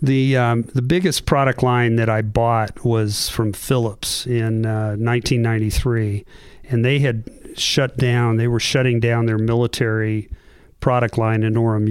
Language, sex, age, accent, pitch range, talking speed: English, male, 50-69, American, 110-125 Hz, 150 wpm